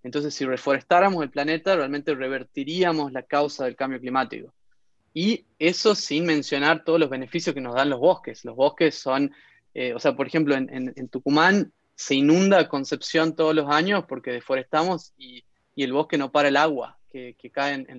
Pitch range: 135-160 Hz